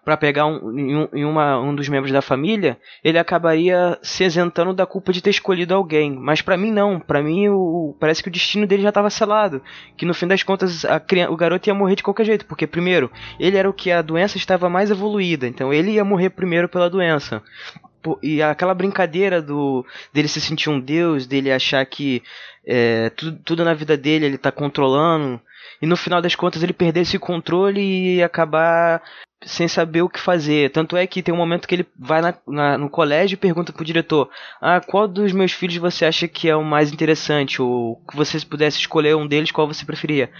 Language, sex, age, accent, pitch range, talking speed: Portuguese, male, 20-39, Brazilian, 150-185 Hz, 210 wpm